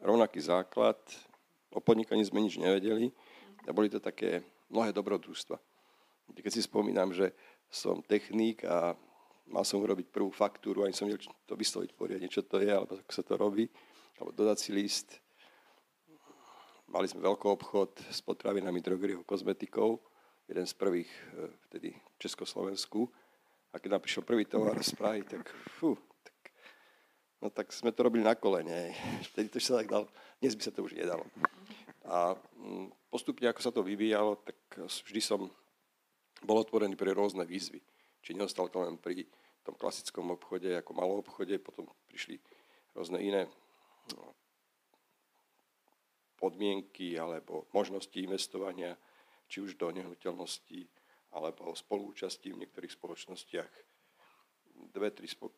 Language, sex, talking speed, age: Slovak, male, 135 wpm, 50-69